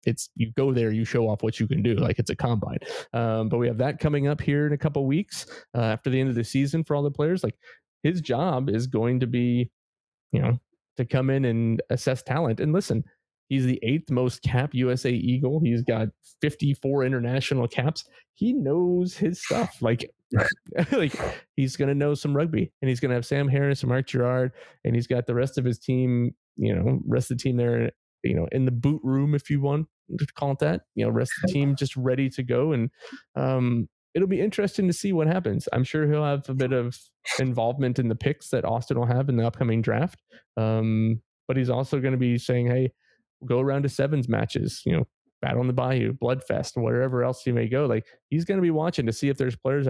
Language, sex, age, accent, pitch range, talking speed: English, male, 30-49, American, 120-145 Hz, 235 wpm